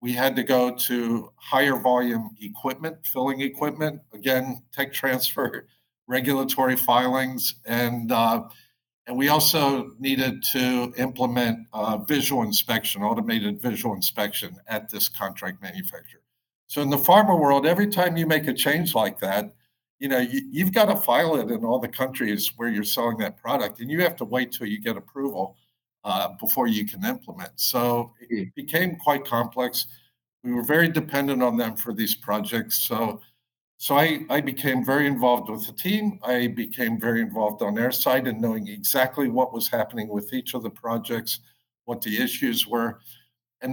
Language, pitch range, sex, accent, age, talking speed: English, 120-145 Hz, male, American, 50-69, 170 wpm